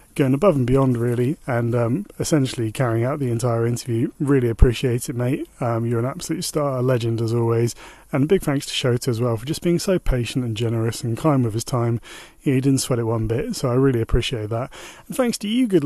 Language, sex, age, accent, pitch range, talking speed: English, male, 30-49, British, 125-155 Hz, 240 wpm